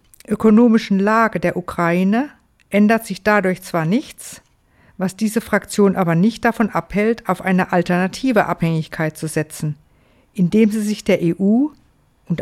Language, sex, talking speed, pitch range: German, female, 135 wpm, 180-230 Hz